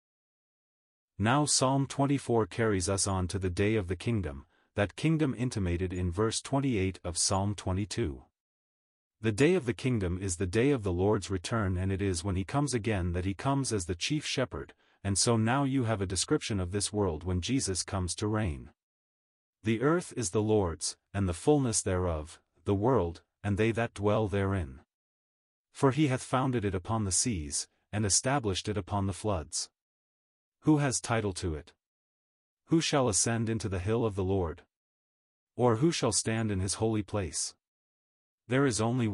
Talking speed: 180 wpm